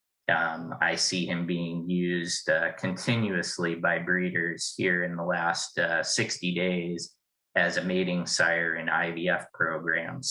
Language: English